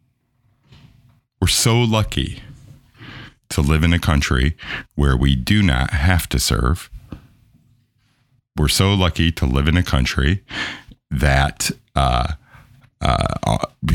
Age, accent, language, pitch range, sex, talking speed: 50-69, American, English, 75-120 Hz, male, 110 wpm